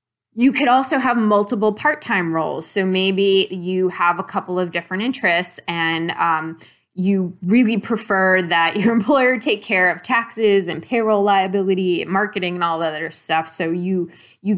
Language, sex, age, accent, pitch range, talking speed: English, female, 20-39, American, 170-205 Hz, 165 wpm